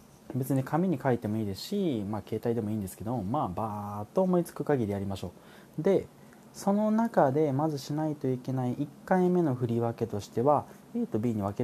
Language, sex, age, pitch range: Japanese, male, 20-39, 105-175 Hz